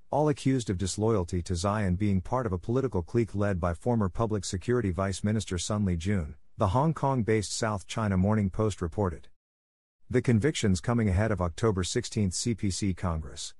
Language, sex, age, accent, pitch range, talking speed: English, male, 50-69, American, 90-115 Hz, 170 wpm